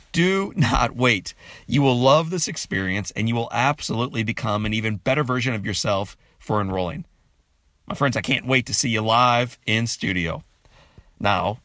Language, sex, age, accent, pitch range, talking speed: English, male, 40-59, American, 105-135 Hz, 170 wpm